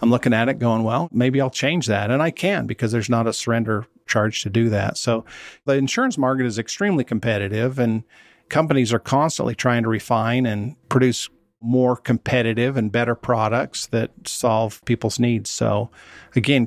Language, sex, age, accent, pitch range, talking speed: English, male, 50-69, American, 115-130 Hz, 175 wpm